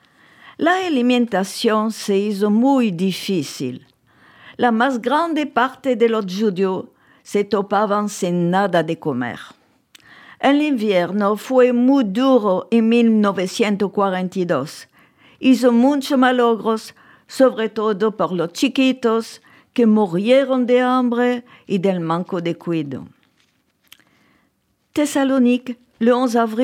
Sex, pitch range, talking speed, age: female, 185-245 Hz, 105 wpm, 50-69